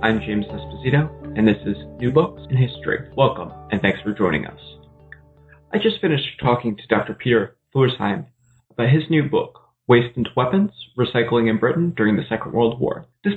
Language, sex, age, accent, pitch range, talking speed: English, male, 30-49, American, 110-140 Hz, 180 wpm